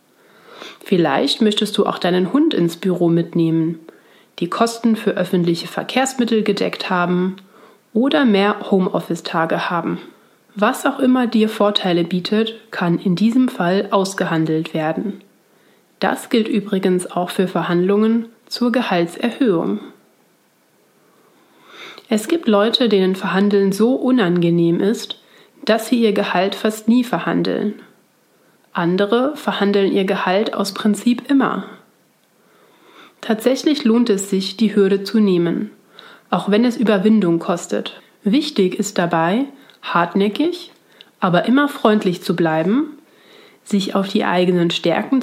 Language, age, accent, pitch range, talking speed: German, 30-49, German, 180-230 Hz, 120 wpm